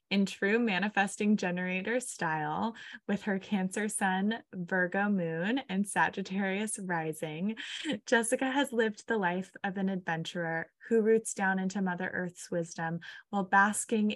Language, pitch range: English, 185-220 Hz